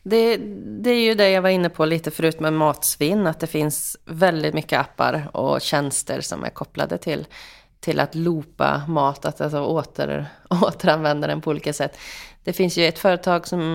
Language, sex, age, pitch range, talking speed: English, female, 30-49, 150-180 Hz, 180 wpm